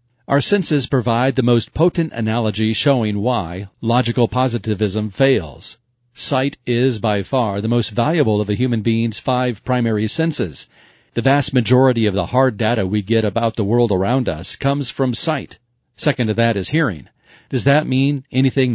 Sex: male